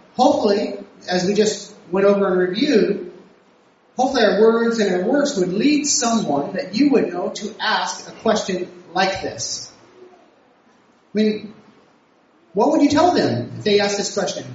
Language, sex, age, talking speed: English, male, 30-49, 160 wpm